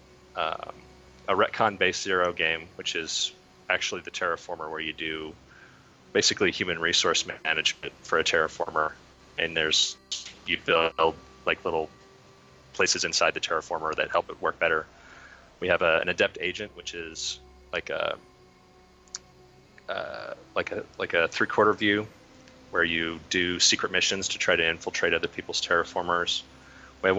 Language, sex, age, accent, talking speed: English, male, 30-49, American, 145 wpm